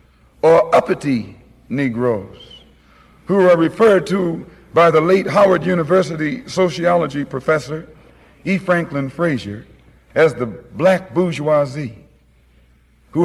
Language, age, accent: English, 60-79, American